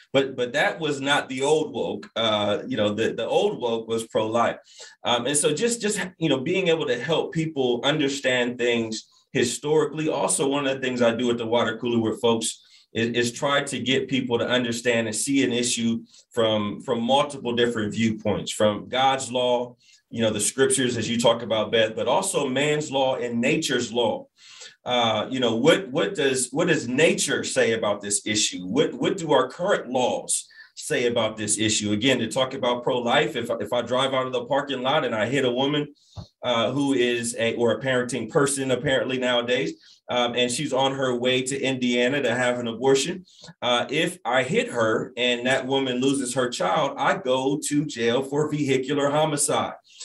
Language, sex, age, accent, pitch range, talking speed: English, male, 30-49, American, 120-140 Hz, 195 wpm